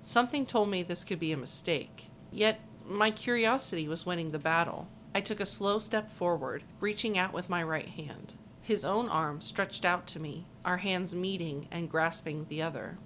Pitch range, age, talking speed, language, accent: 165-205 Hz, 40-59, 190 wpm, English, American